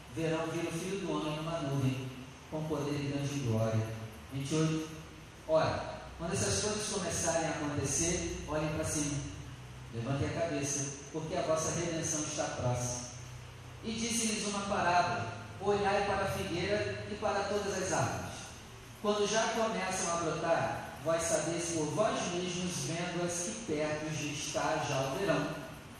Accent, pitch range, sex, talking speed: Brazilian, 135-190 Hz, male, 150 wpm